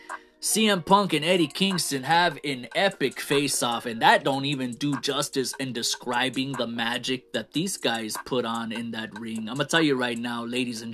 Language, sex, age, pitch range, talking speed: English, male, 20-39, 125-170 Hz, 205 wpm